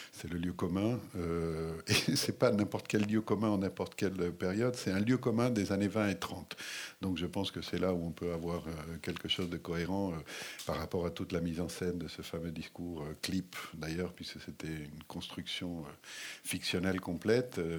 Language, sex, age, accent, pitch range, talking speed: French, male, 50-69, French, 85-100 Hz, 200 wpm